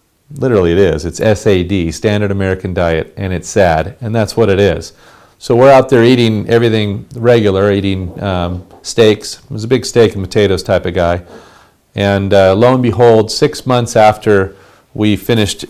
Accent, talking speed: American, 175 wpm